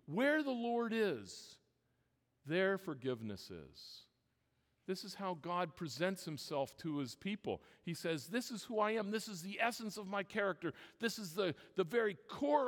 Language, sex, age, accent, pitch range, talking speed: English, male, 50-69, American, 145-205 Hz, 170 wpm